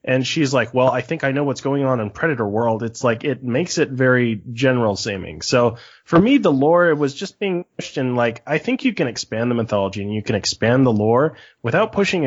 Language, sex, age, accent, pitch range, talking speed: English, male, 20-39, American, 115-150 Hz, 240 wpm